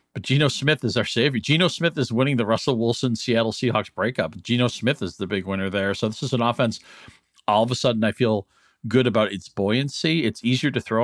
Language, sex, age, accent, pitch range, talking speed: English, male, 50-69, American, 100-125 Hz, 225 wpm